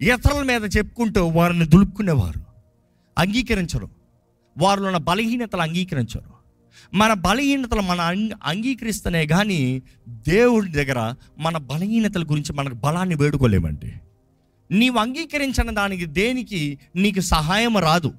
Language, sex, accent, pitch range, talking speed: Telugu, male, native, 130-210 Hz, 100 wpm